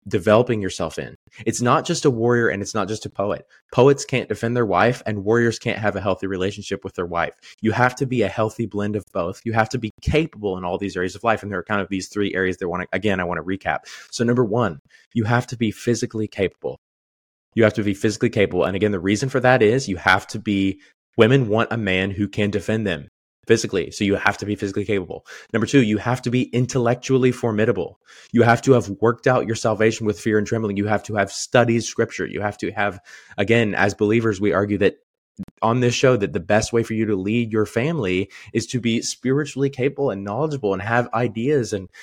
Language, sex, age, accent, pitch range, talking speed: English, male, 20-39, American, 100-120 Hz, 240 wpm